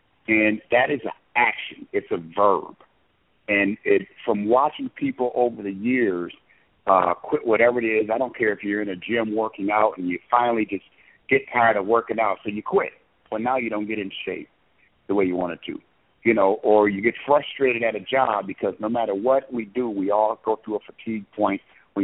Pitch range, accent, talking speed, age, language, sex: 105-150 Hz, American, 210 wpm, 60-79, English, male